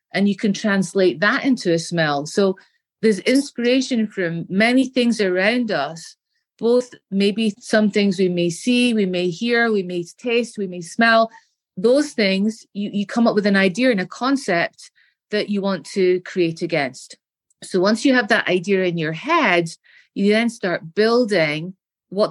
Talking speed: 170 wpm